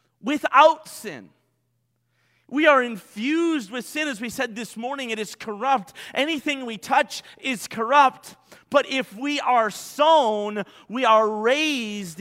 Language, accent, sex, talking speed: English, American, male, 140 wpm